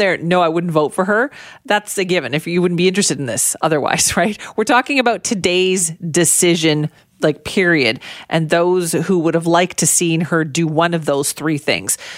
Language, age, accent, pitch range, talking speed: English, 40-59, American, 160-220 Hz, 200 wpm